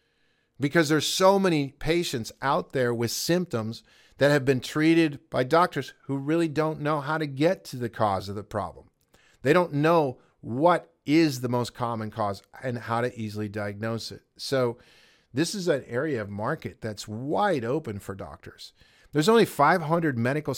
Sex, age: male, 50-69